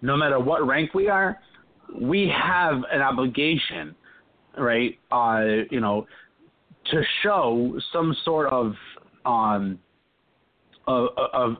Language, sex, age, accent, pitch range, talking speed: English, male, 40-59, American, 110-145 Hz, 110 wpm